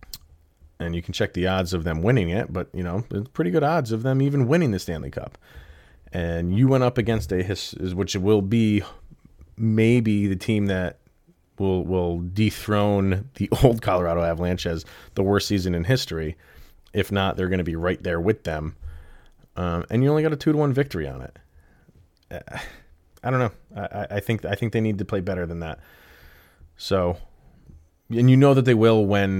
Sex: male